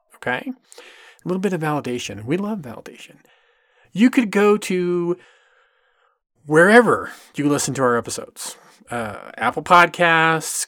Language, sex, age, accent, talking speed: English, male, 30-49, American, 125 wpm